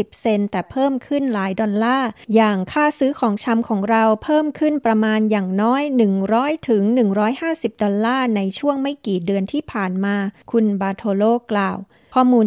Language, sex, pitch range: Thai, female, 210-250 Hz